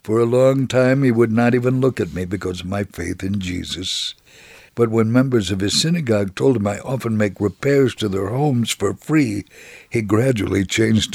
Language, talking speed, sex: English, 200 wpm, male